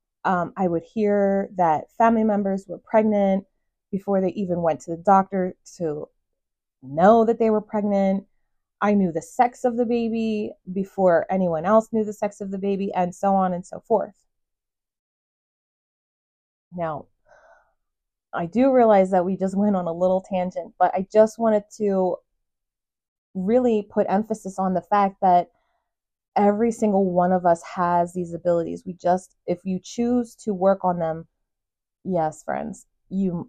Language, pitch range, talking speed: English, 175-205 Hz, 160 wpm